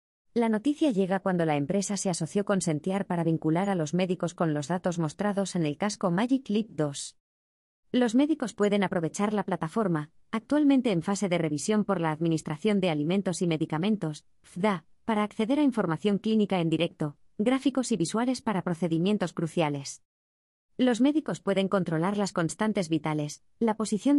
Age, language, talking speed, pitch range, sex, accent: 20-39, Spanish, 165 wpm, 160-220 Hz, female, Spanish